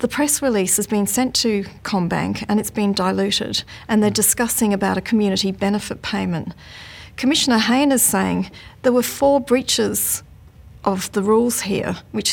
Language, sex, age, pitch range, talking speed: English, female, 40-59, 190-230 Hz, 160 wpm